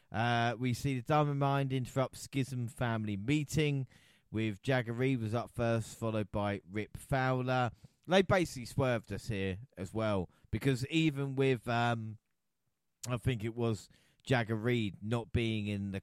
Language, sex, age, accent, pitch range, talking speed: English, male, 30-49, British, 100-130 Hz, 155 wpm